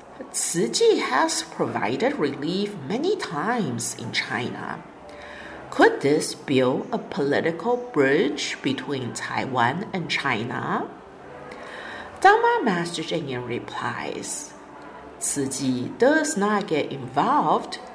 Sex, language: female, Chinese